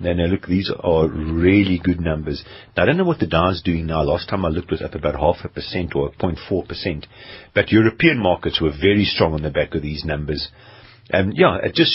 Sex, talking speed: male, 235 wpm